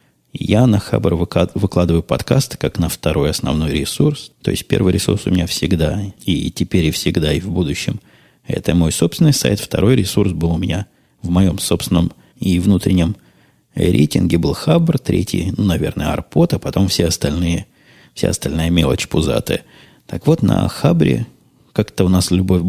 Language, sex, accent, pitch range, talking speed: Russian, male, native, 80-95 Hz, 160 wpm